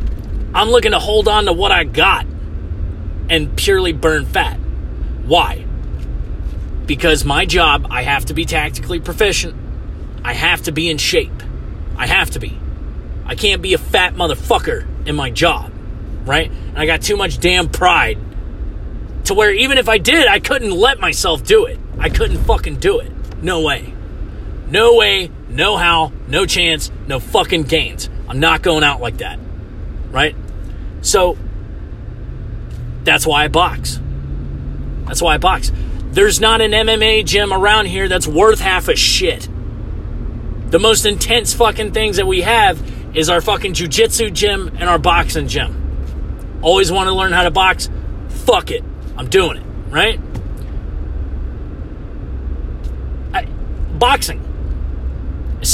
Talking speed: 150 wpm